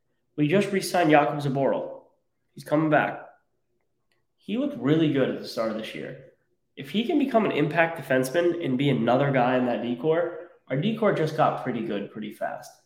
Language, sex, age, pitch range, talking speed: English, male, 10-29, 125-175 Hz, 190 wpm